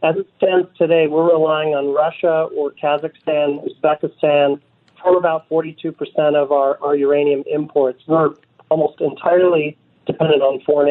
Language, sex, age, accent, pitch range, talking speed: English, male, 40-59, American, 145-160 Hz, 140 wpm